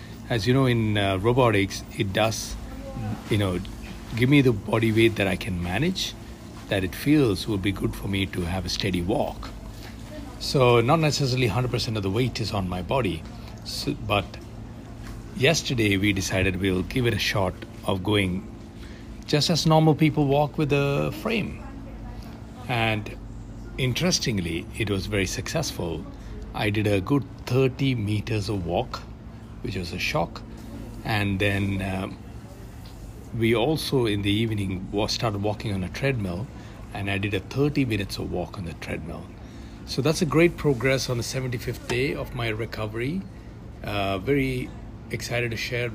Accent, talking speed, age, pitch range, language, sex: Indian, 160 wpm, 60-79, 100-120 Hz, English, male